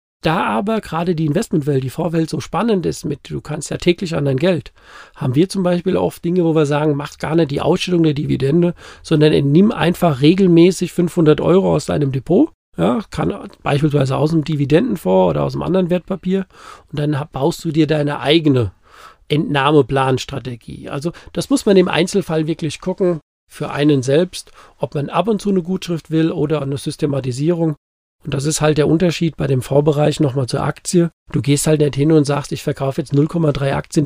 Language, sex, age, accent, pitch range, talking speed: German, male, 50-69, German, 140-170 Hz, 190 wpm